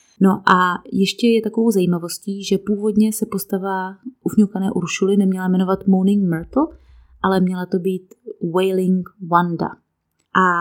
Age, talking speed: 30-49, 130 wpm